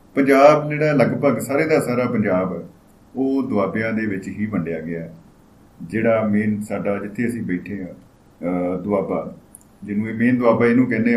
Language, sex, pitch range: Punjabi, male, 100-120 Hz